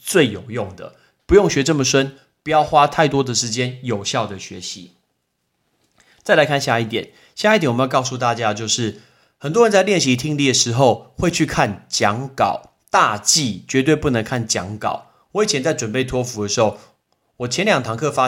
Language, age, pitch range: Chinese, 30-49, 110-155 Hz